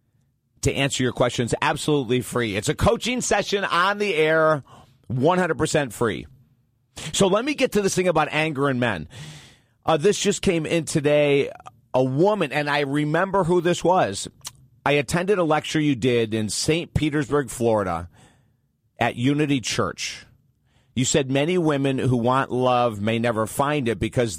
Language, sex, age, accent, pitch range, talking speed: English, male, 40-59, American, 120-150 Hz, 160 wpm